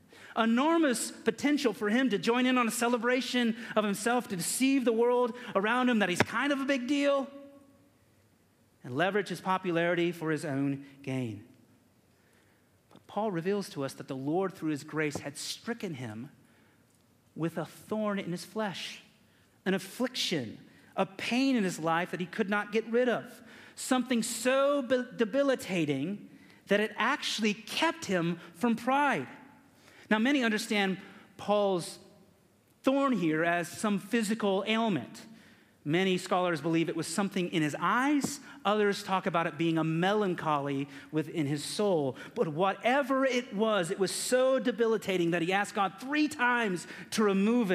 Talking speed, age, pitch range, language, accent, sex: 155 wpm, 40-59, 140-230 Hz, English, American, male